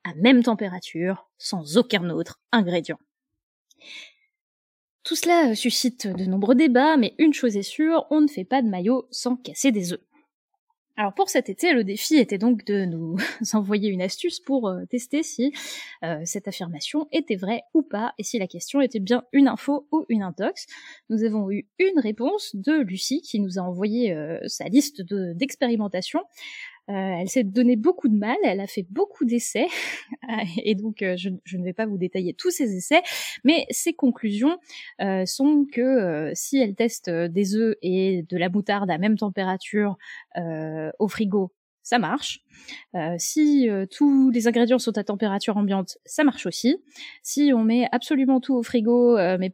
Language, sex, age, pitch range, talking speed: French, female, 20-39, 195-275 Hz, 180 wpm